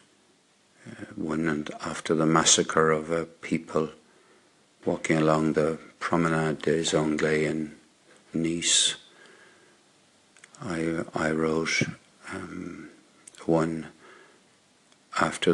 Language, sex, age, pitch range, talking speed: English, male, 60-79, 80-100 Hz, 80 wpm